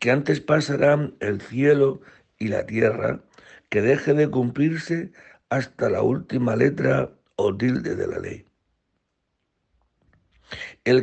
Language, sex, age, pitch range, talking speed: Spanish, male, 60-79, 115-140 Hz, 120 wpm